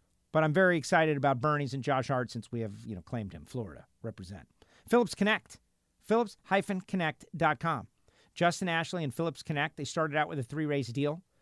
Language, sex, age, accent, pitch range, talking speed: English, male, 50-69, American, 120-165 Hz, 175 wpm